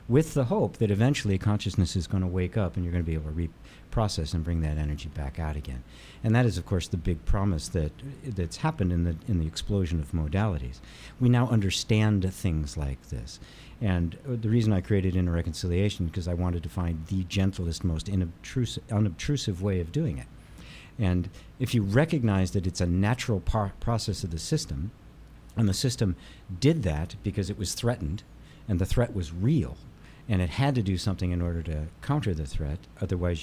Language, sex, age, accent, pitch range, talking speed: English, male, 50-69, American, 85-110 Hz, 200 wpm